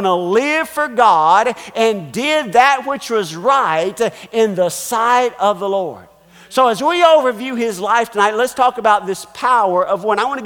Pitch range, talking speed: 195-255 Hz, 190 wpm